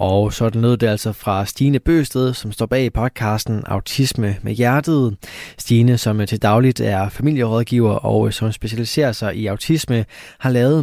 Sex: male